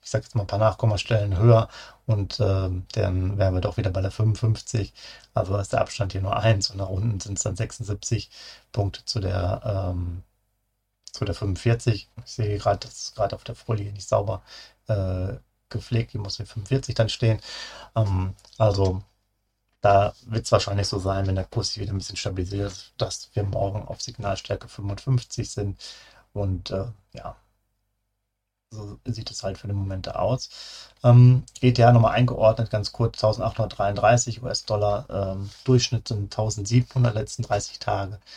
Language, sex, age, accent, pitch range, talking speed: German, male, 40-59, German, 100-115 Hz, 165 wpm